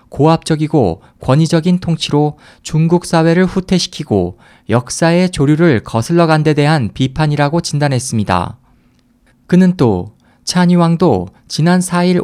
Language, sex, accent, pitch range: Korean, male, native, 130-170 Hz